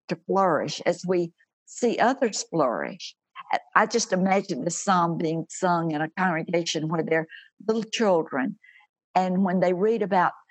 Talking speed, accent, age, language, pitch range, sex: 150 wpm, American, 60-79, English, 165-210 Hz, female